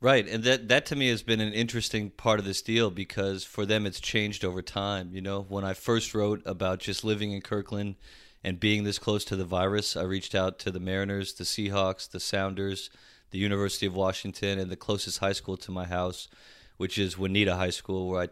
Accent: American